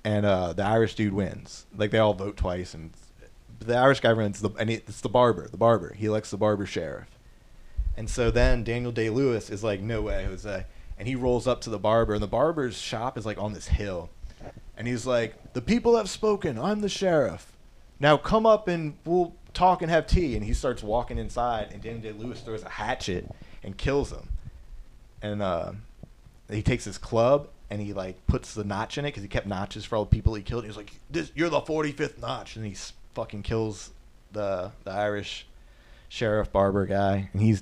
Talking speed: 210 wpm